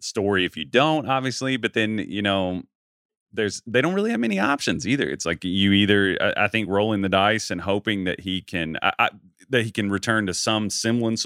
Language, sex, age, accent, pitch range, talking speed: English, male, 30-49, American, 95-120 Hz, 220 wpm